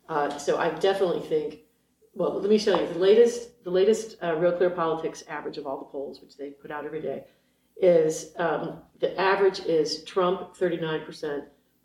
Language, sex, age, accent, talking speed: English, female, 40-59, American, 180 wpm